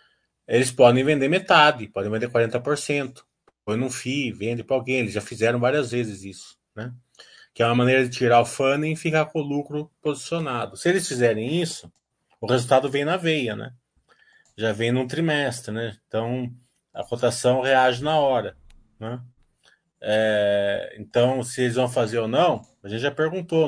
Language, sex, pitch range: Portuguese, male, 115-150 Hz